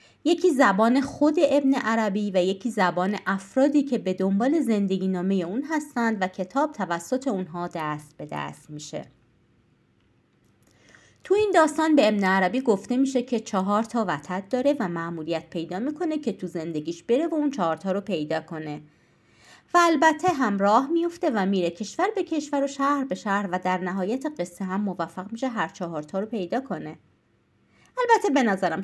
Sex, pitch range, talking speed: female, 180-270 Hz, 160 wpm